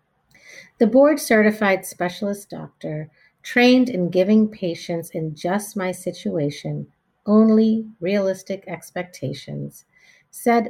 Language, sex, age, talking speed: English, female, 50-69, 95 wpm